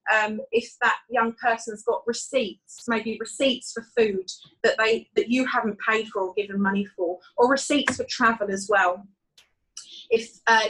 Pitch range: 210-245 Hz